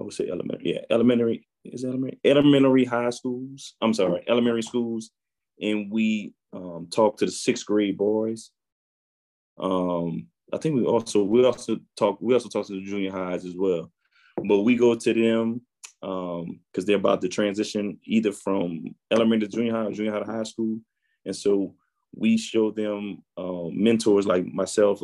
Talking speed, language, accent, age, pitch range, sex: 175 wpm, English, American, 20-39, 100-115 Hz, male